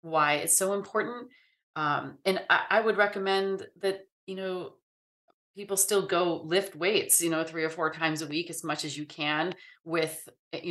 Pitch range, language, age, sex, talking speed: 155-190 Hz, English, 30-49, female, 185 wpm